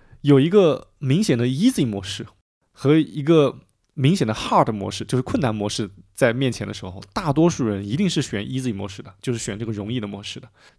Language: Chinese